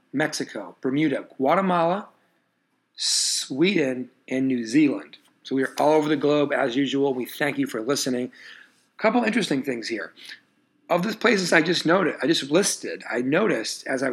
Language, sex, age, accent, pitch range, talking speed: English, male, 40-59, American, 130-165 Hz, 165 wpm